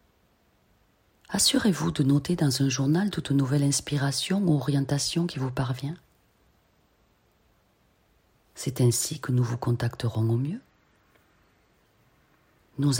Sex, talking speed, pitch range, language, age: female, 105 wpm, 115-160 Hz, French, 40-59